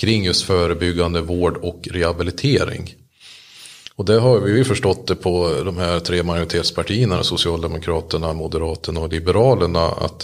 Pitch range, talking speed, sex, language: 85-105 Hz, 135 wpm, male, Swedish